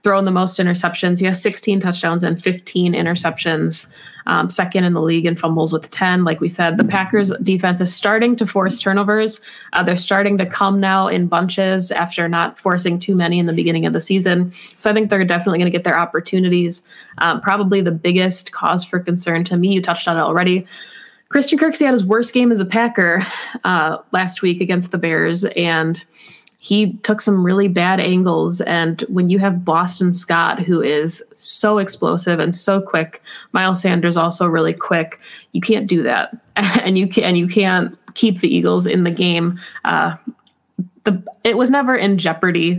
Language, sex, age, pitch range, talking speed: English, female, 20-39, 170-200 Hz, 190 wpm